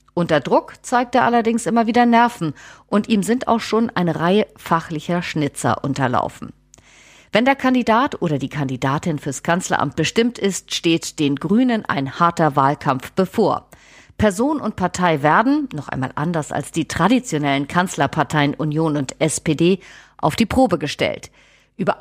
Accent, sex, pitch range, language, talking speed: German, female, 150-215 Hz, German, 145 wpm